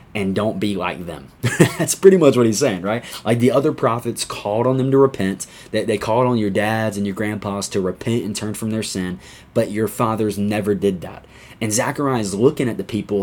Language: English